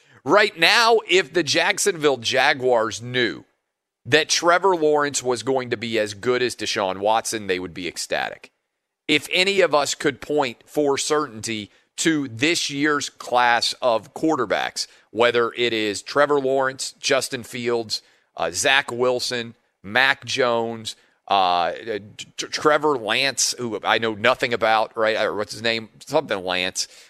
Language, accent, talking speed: English, American, 140 wpm